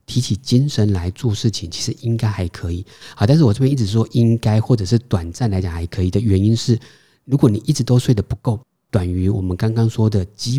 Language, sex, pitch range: Chinese, male, 100-130 Hz